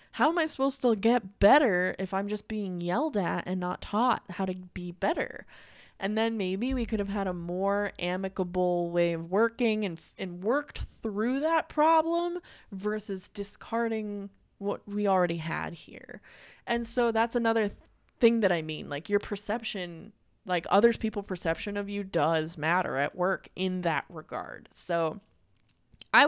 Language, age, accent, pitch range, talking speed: English, 20-39, American, 175-220 Hz, 170 wpm